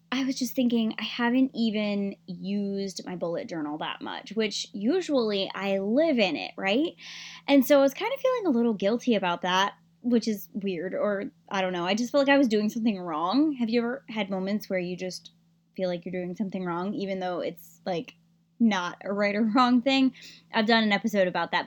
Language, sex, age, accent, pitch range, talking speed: English, female, 10-29, American, 185-250 Hz, 215 wpm